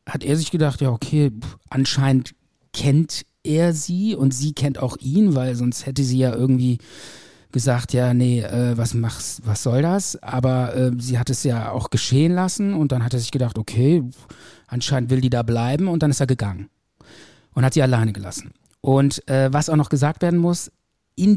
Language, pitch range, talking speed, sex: German, 130-155 Hz, 200 wpm, male